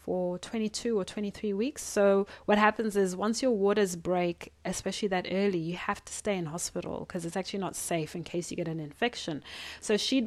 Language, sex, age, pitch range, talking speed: English, female, 30-49, 190-240 Hz, 205 wpm